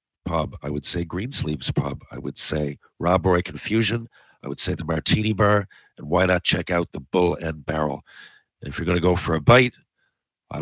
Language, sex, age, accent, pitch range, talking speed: English, male, 50-69, American, 90-120 Hz, 210 wpm